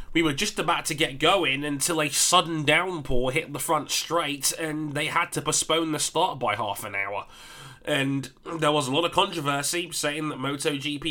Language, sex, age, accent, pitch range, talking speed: English, male, 20-39, British, 135-165 Hz, 195 wpm